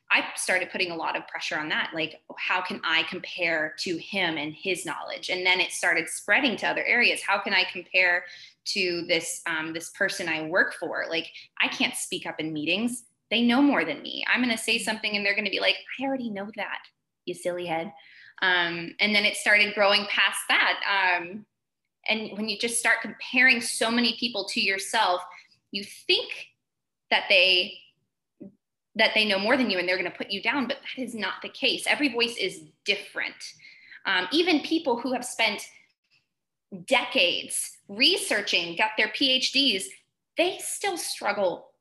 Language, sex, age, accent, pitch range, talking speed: English, female, 20-39, American, 180-235 Hz, 185 wpm